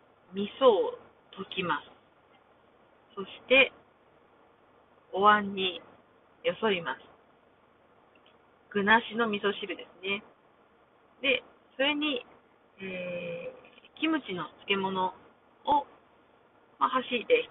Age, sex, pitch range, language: 40-59, female, 185-275 Hz, Japanese